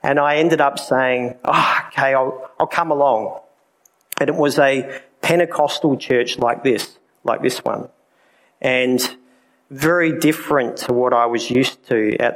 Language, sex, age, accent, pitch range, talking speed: English, male, 40-59, Australian, 125-155 Hz, 150 wpm